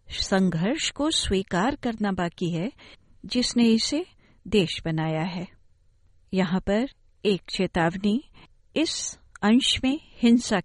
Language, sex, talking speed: Hindi, female, 105 wpm